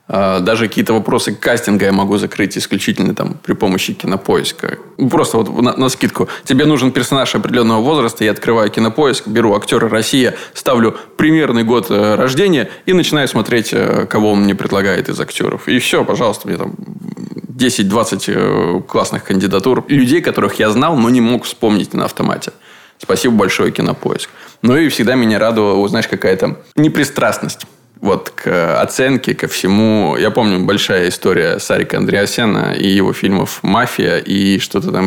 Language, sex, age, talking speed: Russian, male, 20-39, 150 wpm